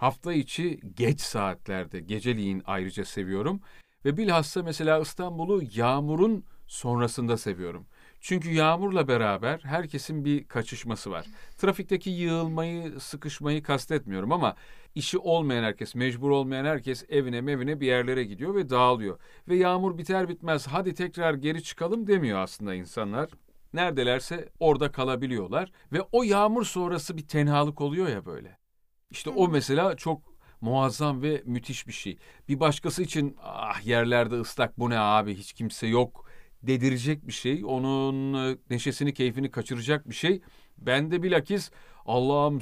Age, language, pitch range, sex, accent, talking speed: 40-59, Turkish, 125-170 Hz, male, native, 135 wpm